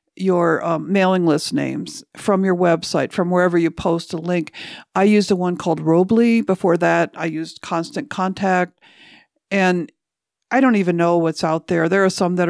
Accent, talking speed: American, 180 wpm